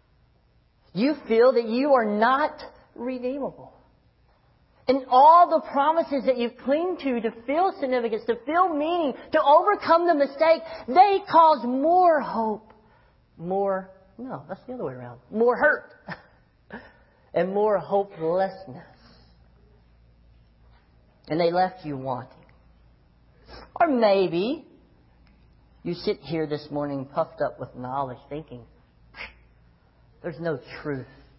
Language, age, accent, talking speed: English, 40-59, American, 115 wpm